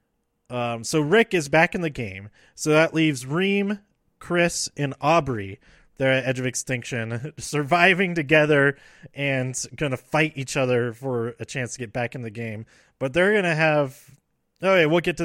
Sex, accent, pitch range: male, American, 130-170 Hz